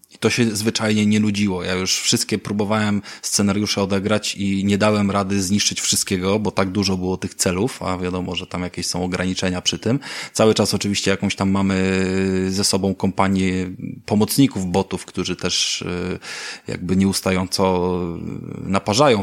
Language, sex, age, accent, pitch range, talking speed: Polish, male, 20-39, native, 95-105 Hz, 155 wpm